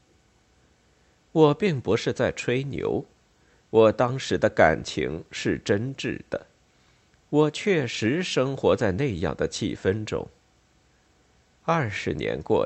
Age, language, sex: 50-69, Chinese, male